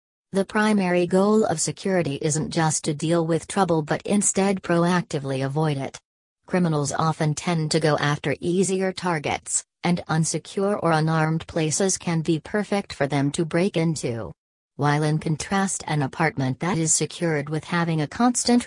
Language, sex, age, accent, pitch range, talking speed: English, female, 40-59, American, 150-175 Hz, 160 wpm